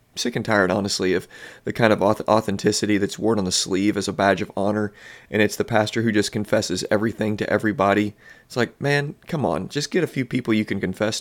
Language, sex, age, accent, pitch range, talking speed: English, male, 30-49, American, 105-120 Hz, 225 wpm